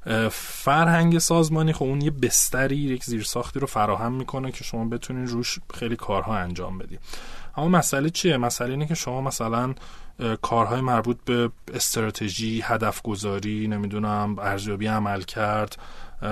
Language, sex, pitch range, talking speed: Persian, male, 110-140 Hz, 135 wpm